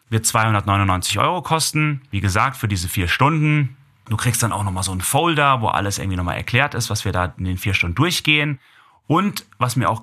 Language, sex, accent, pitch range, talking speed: German, male, German, 105-140 Hz, 215 wpm